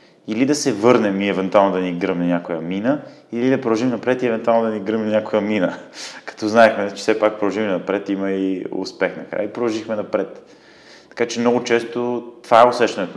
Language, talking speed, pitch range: Bulgarian, 205 wpm, 100-120 Hz